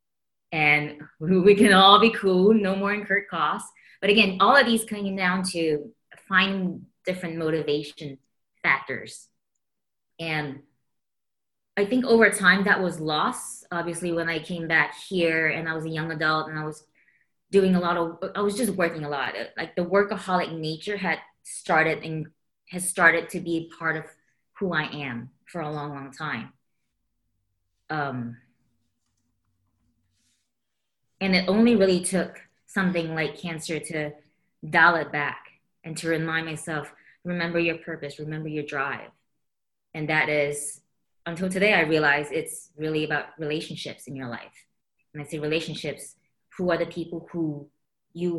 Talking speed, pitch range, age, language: 155 wpm, 150-180 Hz, 20-39, English